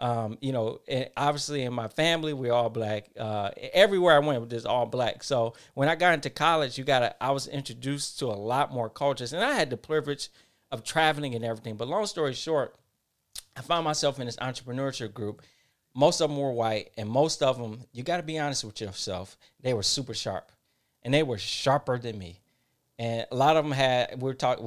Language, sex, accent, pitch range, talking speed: English, male, American, 120-155 Hz, 220 wpm